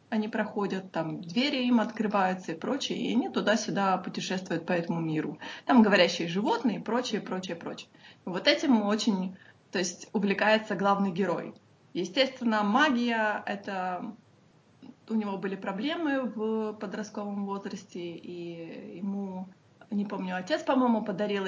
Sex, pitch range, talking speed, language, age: female, 180-220 Hz, 130 wpm, Russian, 20-39